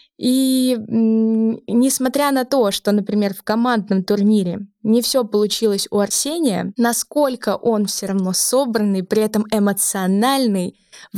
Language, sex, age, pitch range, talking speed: Russian, female, 20-39, 200-235 Hz, 120 wpm